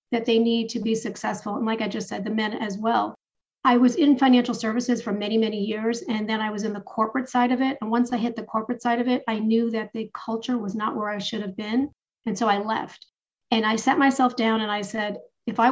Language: English